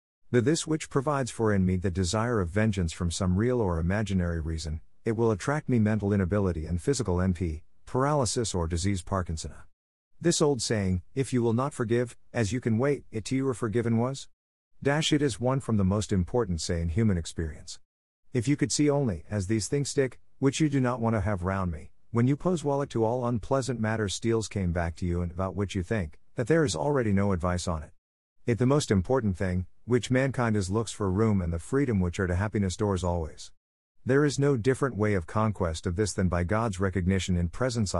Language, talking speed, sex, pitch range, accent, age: English, 220 wpm, male, 90-125 Hz, American, 50-69